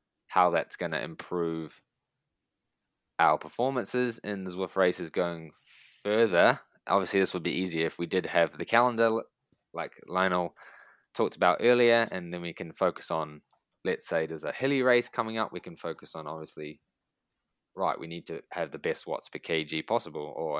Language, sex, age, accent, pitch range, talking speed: English, male, 20-39, Australian, 80-105 Hz, 170 wpm